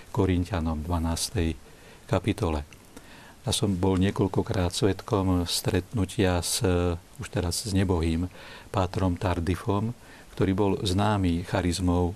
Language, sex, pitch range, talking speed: Slovak, male, 90-105 Hz, 100 wpm